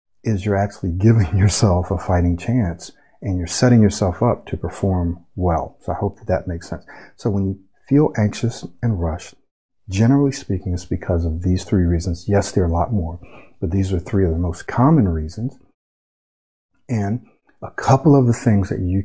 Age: 50-69